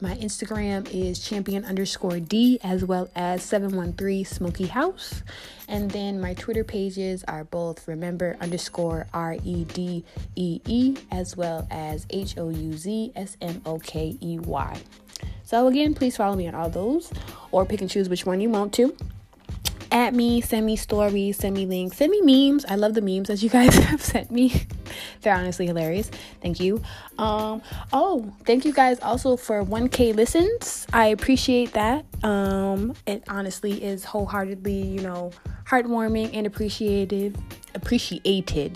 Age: 20-39